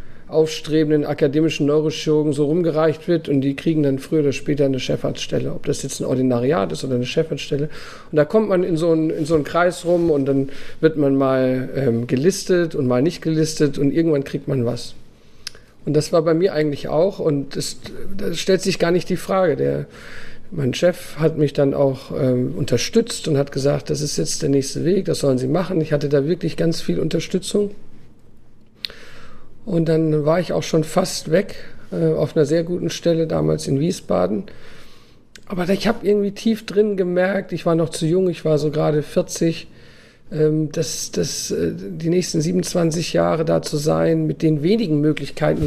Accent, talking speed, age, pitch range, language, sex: German, 185 wpm, 50-69, 140-170 Hz, German, male